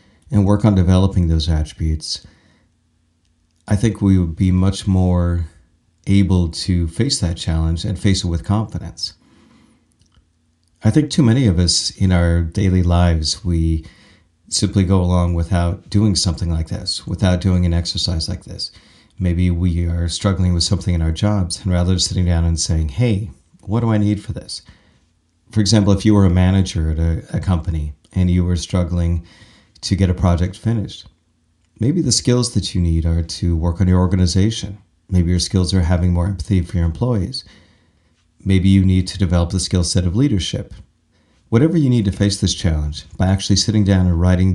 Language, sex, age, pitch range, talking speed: English, male, 40-59, 85-100 Hz, 185 wpm